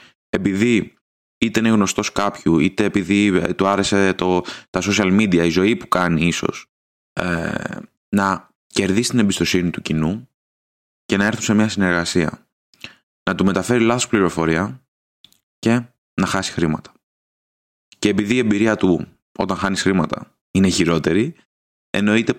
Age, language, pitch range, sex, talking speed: 20-39, Greek, 85-105 Hz, male, 135 wpm